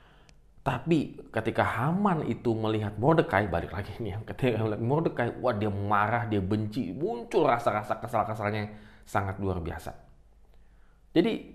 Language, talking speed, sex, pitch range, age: Indonesian, 125 wpm, male, 100-130 Hz, 20-39